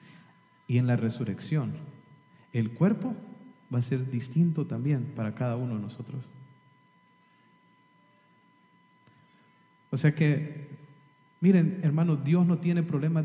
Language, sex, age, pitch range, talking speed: English, male, 40-59, 140-190 Hz, 115 wpm